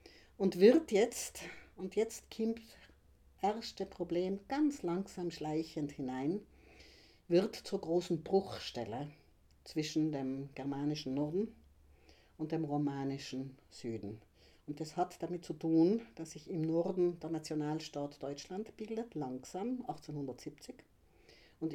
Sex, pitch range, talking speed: female, 130-175 Hz, 115 wpm